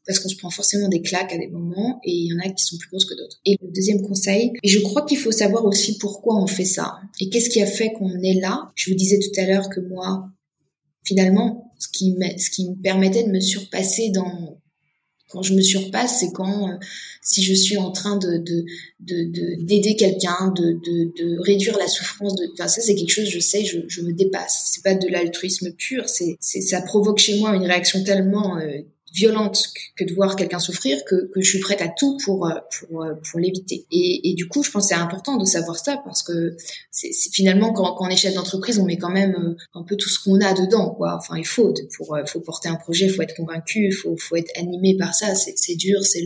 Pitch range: 175-200 Hz